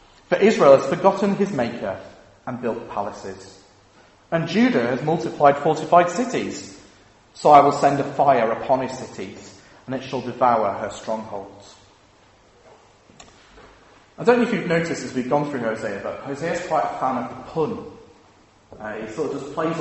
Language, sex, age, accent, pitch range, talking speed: English, male, 30-49, British, 115-165 Hz, 165 wpm